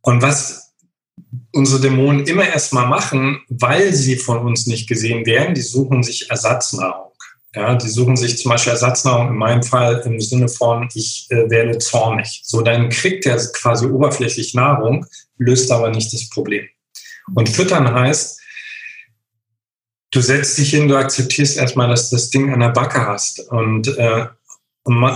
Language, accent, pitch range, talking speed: German, German, 115-135 Hz, 160 wpm